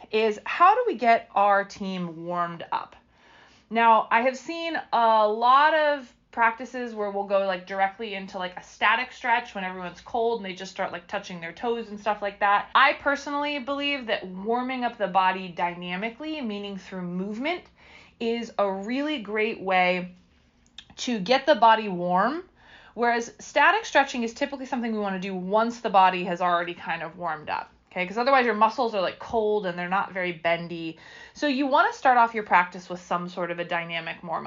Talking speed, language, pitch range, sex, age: 190 wpm, English, 185-245 Hz, female, 20-39